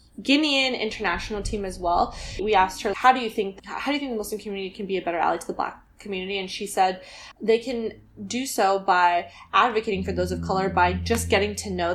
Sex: female